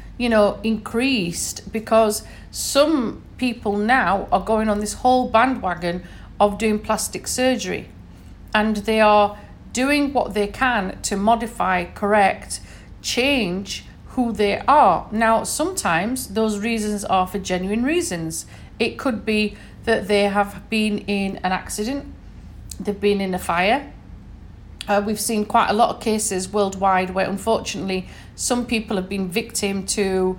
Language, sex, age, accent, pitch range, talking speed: English, female, 40-59, British, 195-230 Hz, 140 wpm